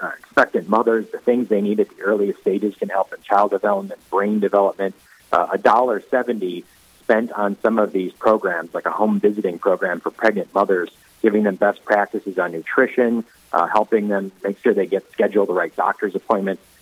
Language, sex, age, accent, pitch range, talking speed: English, male, 40-59, American, 100-140 Hz, 195 wpm